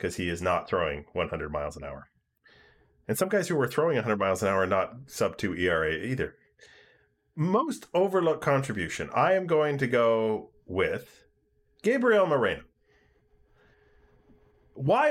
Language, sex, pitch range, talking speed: English, male, 95-135 Hz, 145 wpm